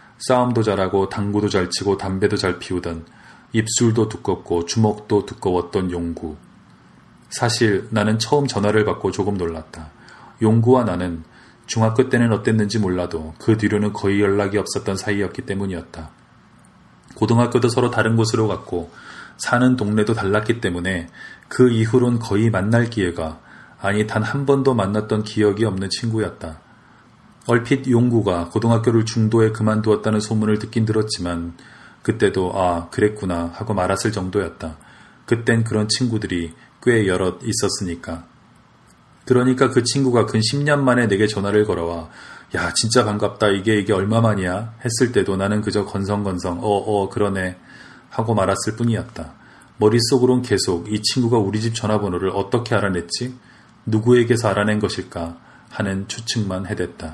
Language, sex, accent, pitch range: Korean, male, native, 95-115 Hz